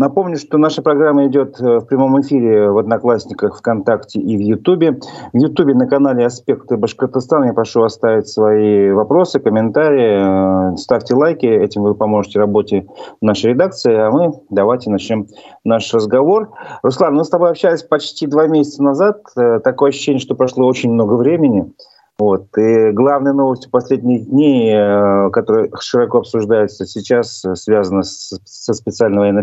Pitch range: 105-140 Hz